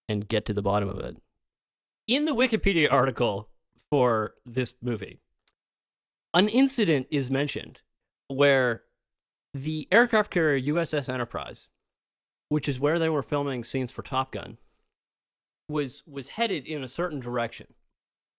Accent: American